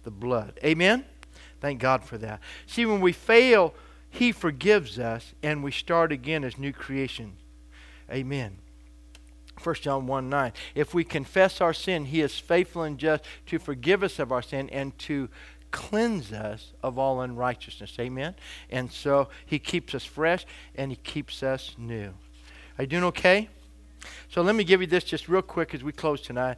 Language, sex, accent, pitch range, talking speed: English, male, American, 115-165 Hz, 175 wpm